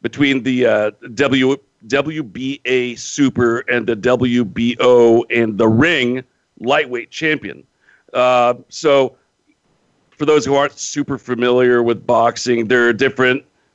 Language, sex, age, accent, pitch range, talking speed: English, male, 50-69, American, 120-140 Hz, 120 wpm